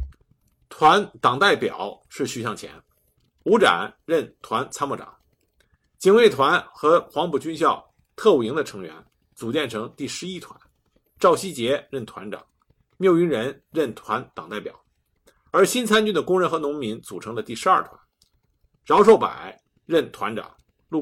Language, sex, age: Chinese, male, 50-69